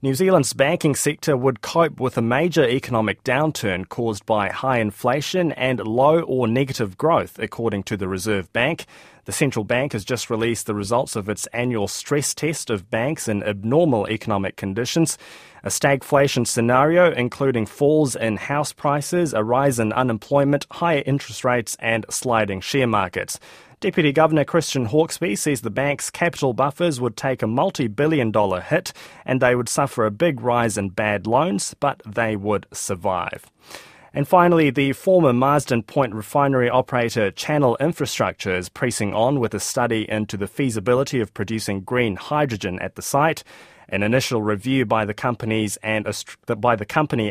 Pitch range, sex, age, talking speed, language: 110-145 Hz, male, 20-39, 165 wpm, English